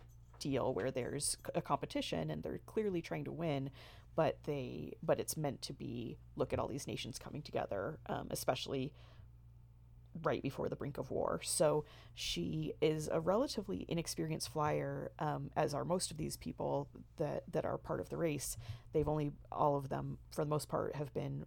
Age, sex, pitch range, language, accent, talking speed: 30-49, female, 115-160 Hz, English, American, 180 wpm